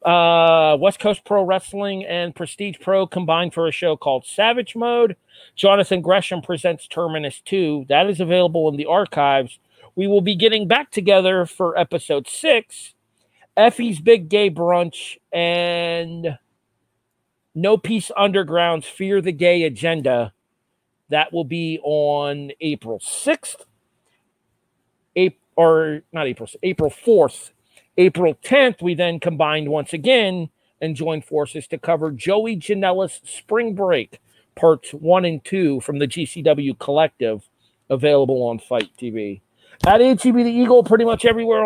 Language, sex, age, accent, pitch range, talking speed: English, male, 40-59, American, 145-195 Hz, 135 wpm